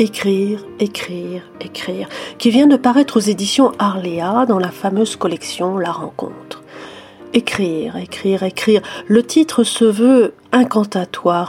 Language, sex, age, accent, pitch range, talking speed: French, female, 40-59, French, 185-235 Hz, 125 wpm